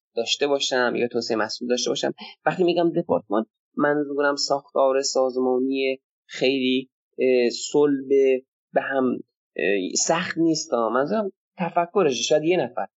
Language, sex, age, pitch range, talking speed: Persian, male, 20-39, 125-165 Hz, 110 wpm